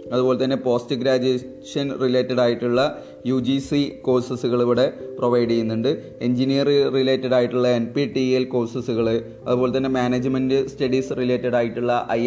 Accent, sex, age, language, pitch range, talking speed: native, male, 20-39, Malayalam, 120-150 Hz, 125 wpm